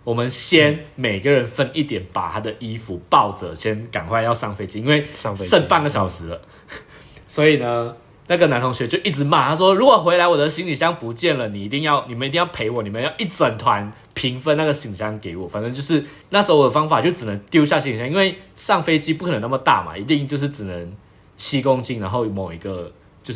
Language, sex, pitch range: Chinese, male, 100-145 Hz